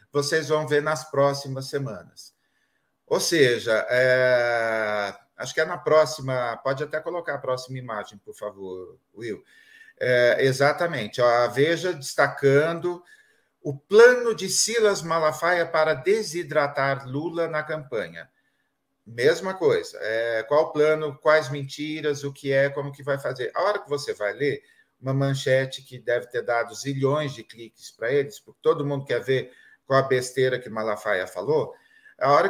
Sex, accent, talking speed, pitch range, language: male, Brazilian, 155 wpm, 135-175 Hz, Portuguese